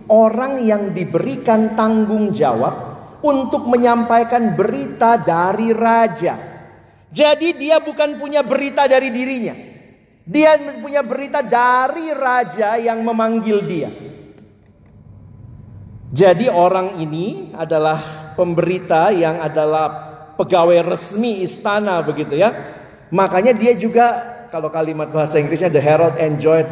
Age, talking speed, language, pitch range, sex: 50-69, 105 wpm, Indonesian, 135-220 Hz, male